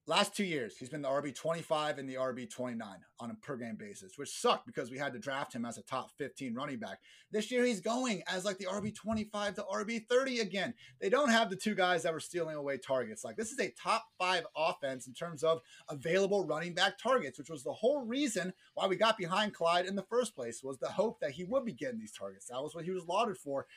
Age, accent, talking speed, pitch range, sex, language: 30-49, American, 240 wpm, 160-210 Hz, male, English